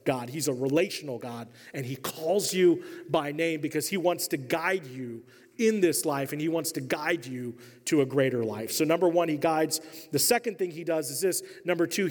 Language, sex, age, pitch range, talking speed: English, male, 40-59, 155-195 Hz, 220 wpm